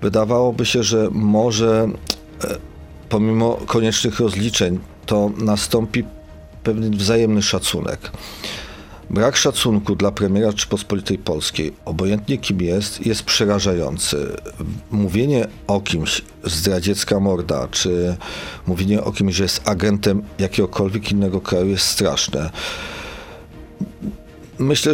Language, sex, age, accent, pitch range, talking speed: Polish, male, 40-59, native, 95-110 Hz, 100 wpm